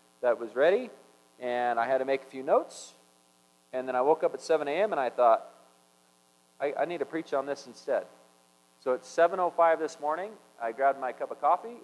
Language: English